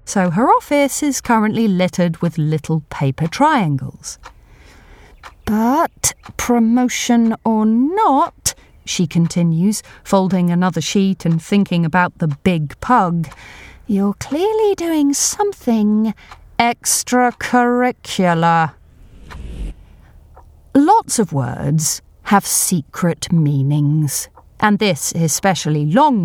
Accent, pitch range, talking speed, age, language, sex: British, 160-220 Hz, 90 wpm, 40-59, English, female